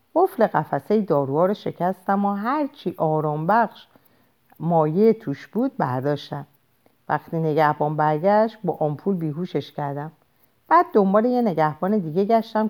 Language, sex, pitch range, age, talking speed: Persian, female, 150-235 Hz, 50-69, 125 wpm